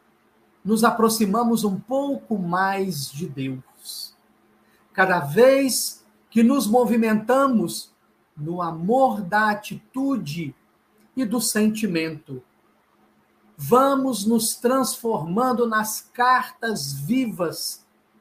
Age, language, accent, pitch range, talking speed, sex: 50-69, Portuguese, Brazilian, 185-245 Hz, 80 wpm, male